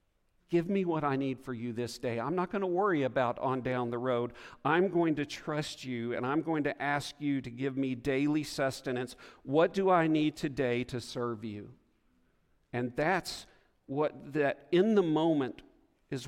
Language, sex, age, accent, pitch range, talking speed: English, male, 50-69, American, 120-150 Hz, 190 wpm